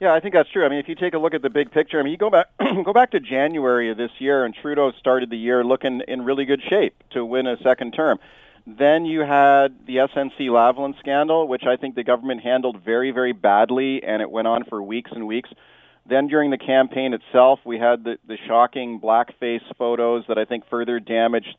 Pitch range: 125-140 Hz